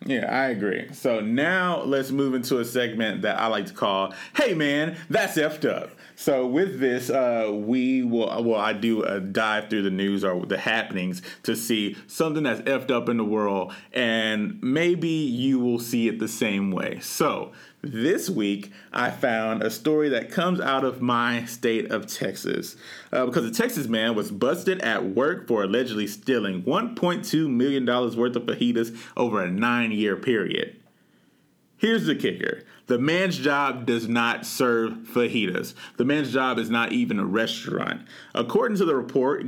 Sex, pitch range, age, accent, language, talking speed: male, 115-145 Hz, 30-49, American, English, 175 wpm